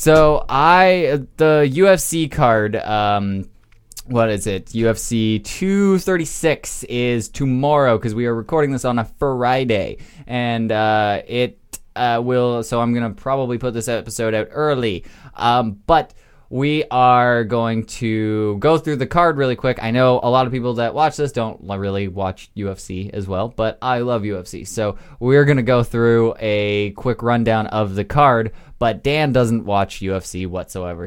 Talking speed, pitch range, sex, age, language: 165 wpm, 105-130 Hz, male, 20-39, English